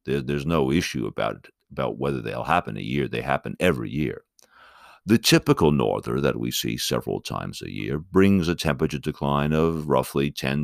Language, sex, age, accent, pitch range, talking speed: English, male, 60-79, American, 70-95 Hz, 180 wpm